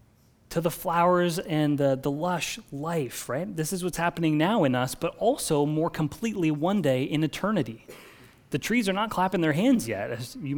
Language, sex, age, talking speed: English, male, 30-49, 195 wpm